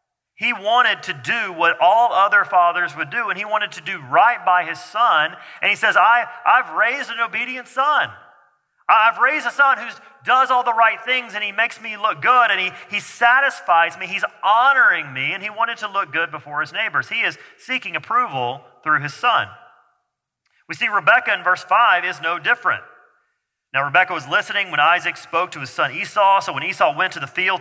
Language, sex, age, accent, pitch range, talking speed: English, male, 40-59, American, 165-235 Hz, 205 wpm